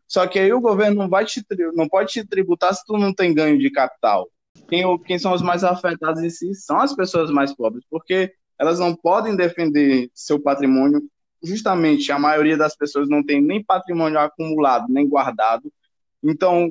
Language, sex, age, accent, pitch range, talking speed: Portuguese, male, 20-39, Brazilian, 155-200 Hz, 180 wpm